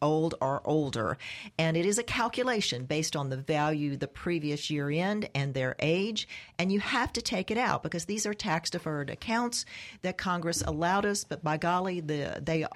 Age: 50-69